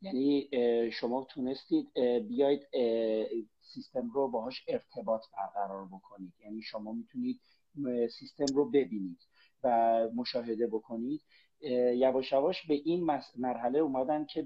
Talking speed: 110 wpm